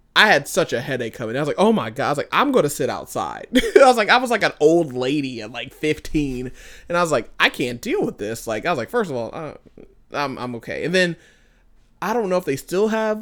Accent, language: American, English